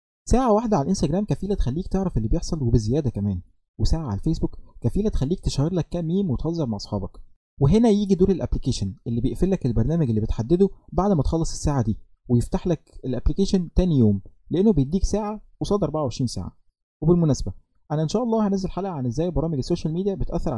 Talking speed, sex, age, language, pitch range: 175 wpm, male, 20-39, Arabic, 110-175 Hz